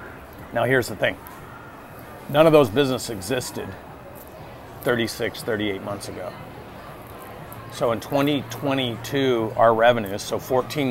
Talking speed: 110 wpm